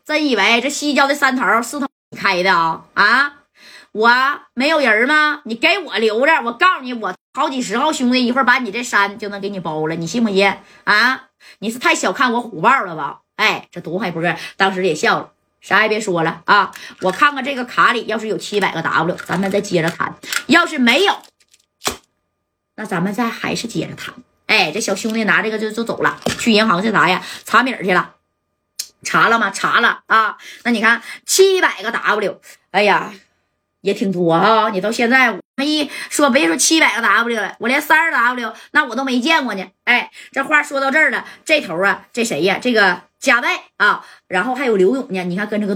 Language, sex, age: Chinese, female, 20-39